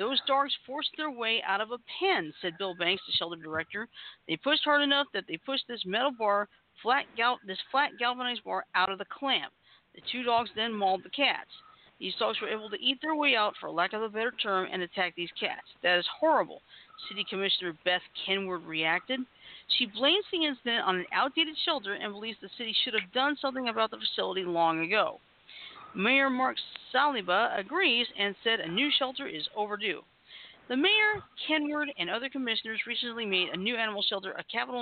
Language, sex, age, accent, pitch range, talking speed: English, female, 50-69, American, 190-270 Hz, 195 wpm